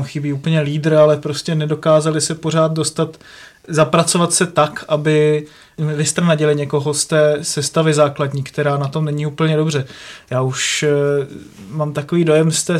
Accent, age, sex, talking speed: native, 30-49, male, 150 wpm